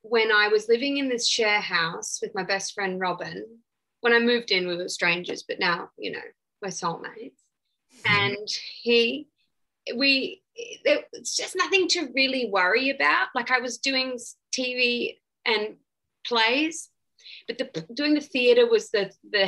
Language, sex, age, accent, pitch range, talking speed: English, female, 20-39, Australian, 185-260 Hz, 155 wpm